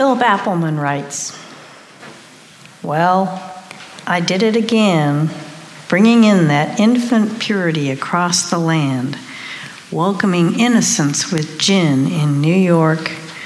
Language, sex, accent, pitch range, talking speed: English, female, American, 155-210 Hz, 105 wpm